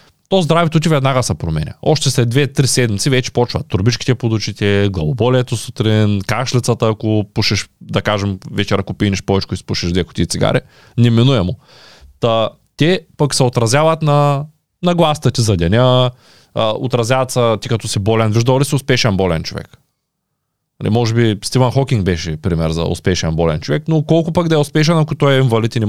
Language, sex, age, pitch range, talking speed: Bulgarian, male, 20-39, 105-150 Hz, 175 wpm